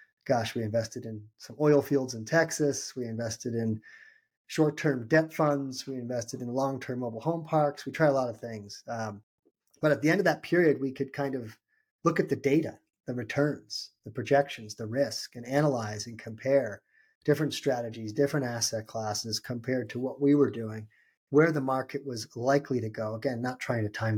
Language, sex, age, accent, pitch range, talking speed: English, male, 30-49, American, 115-145 Hz, 190 wpm